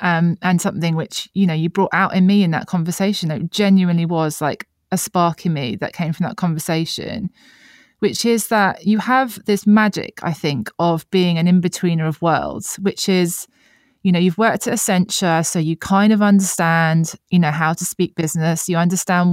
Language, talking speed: English, 195 wpm